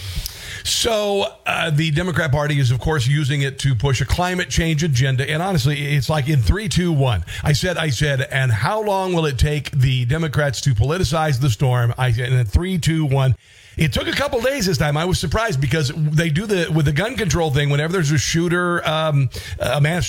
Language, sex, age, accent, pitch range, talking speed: English, male, 50-69, American, 130-165 Hz, 220 wpm